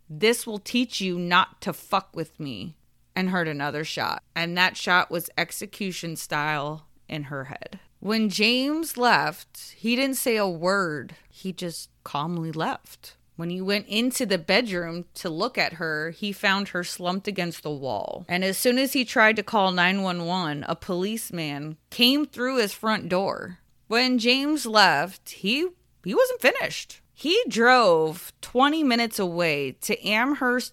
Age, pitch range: 30-49, 175-250 Hz